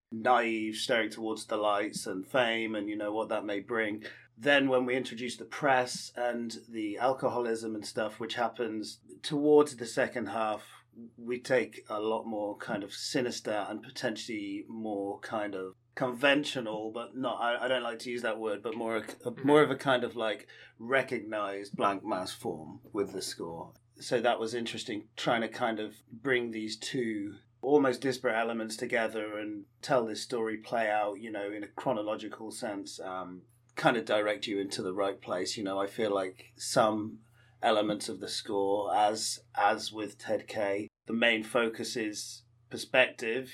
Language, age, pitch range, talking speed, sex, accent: English, 30-49, 105-120 Hz, 175 wpm, male, British